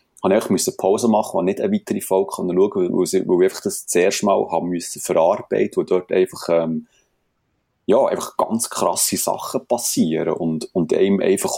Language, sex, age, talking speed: German, male, 30-49, 170 wpm